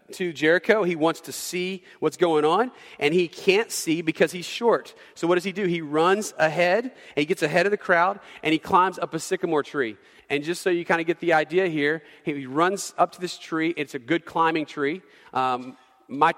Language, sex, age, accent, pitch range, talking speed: English, male, 40-59, American, 155-185 Hz, 220 wpm